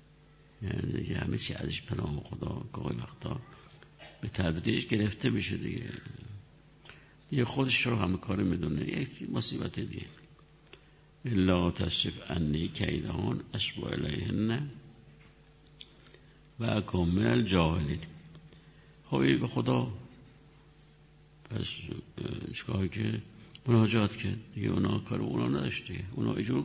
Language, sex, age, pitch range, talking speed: Persian, male, 60-79, 90-145 Hz, 105 wpm